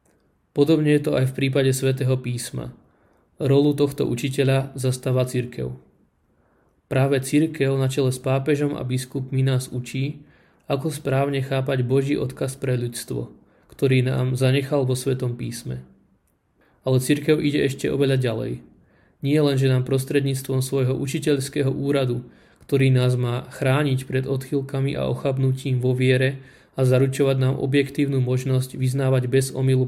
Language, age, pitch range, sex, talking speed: Slovak, 20-39, 130-140 Hz, male, 135 wpm